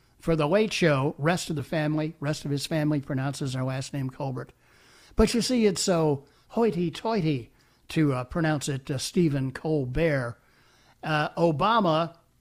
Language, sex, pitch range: English, male, 140-210 Hz